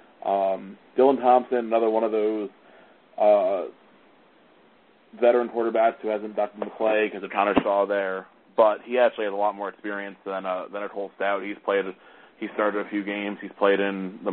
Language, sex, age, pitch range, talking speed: English, male, 20-39, 100-110 Hz, 190 wpm